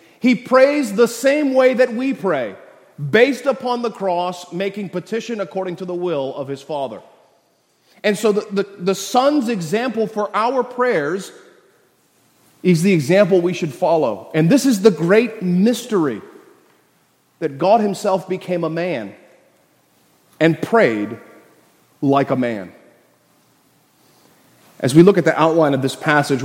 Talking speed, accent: 140 wpm, American